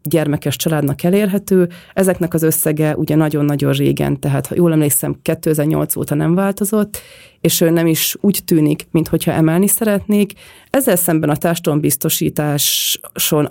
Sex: female